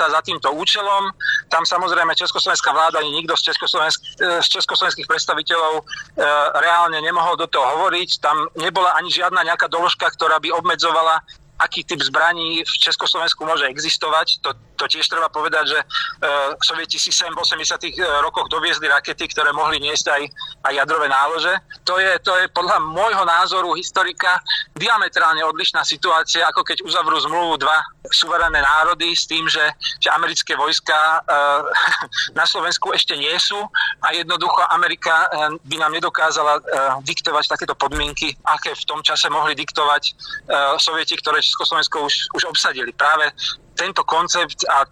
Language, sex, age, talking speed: Slovak, male, 40-59, 150 wpm